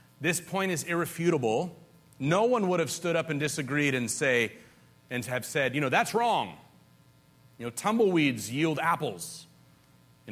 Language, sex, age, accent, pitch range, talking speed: English, male, 40-59, American, 110-175 Hz, 155 wpm